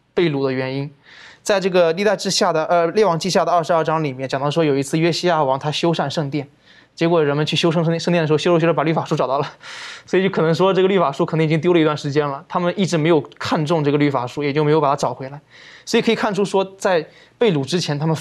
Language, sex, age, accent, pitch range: Chinese, male, 20-39, native, 145-170 Hz